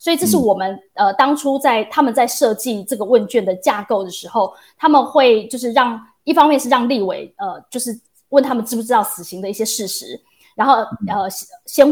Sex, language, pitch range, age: female, Chinese, 210-265 Hz, 20-39